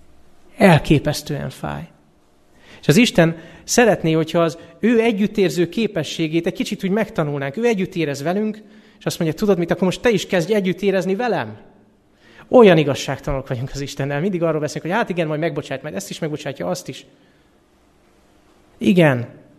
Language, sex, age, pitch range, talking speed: Hungarian, male, 30-49, 125-170 Hz, 155 wpm